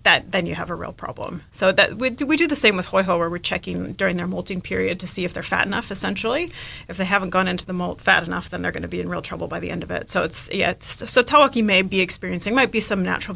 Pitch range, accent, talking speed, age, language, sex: 180-205 Hz, American, 295 wpm, 30-49, English, female